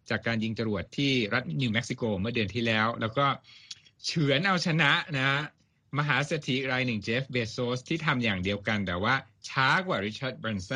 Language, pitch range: Thai, 115-155 Hz